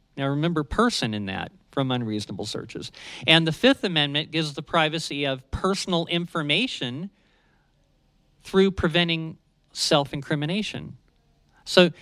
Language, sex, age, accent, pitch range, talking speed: English, male, 40-59, American, 140-175 Hz, 110 wpm